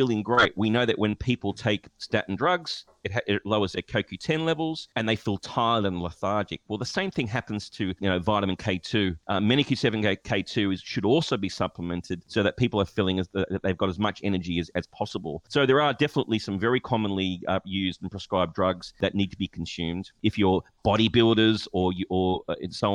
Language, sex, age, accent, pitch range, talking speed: English, male, 30-49, Australian, 95-110 Hz, 210 wpm